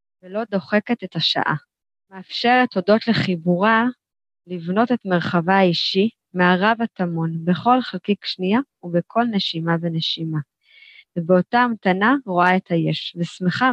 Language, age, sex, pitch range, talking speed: Hebrew, 20-39, female, 175-225 Hz, 110 wpm